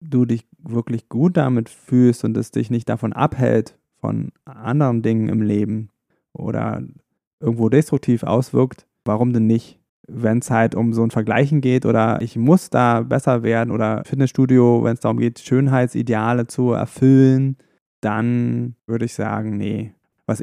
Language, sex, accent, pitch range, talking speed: German, male, German, 110-135 Hz, 155 wpm